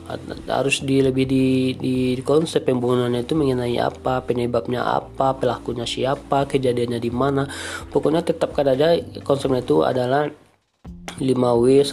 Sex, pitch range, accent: male, 120-135 Hz, native